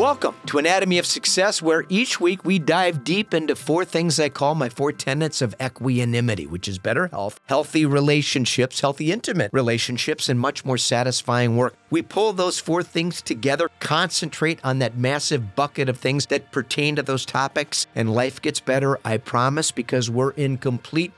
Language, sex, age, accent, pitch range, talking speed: English, male, 40-59, American, 130-170 Hz, 180 wpm